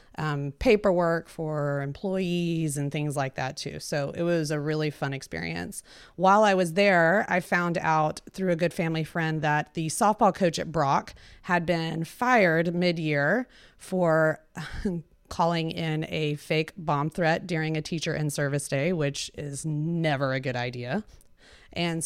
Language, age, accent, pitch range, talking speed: English, 30-49, American, 150-180 Hz, 155 wpm